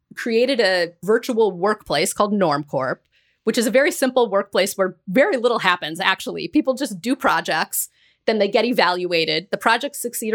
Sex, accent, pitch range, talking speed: female, American, 180-245 Hz, 160 wpm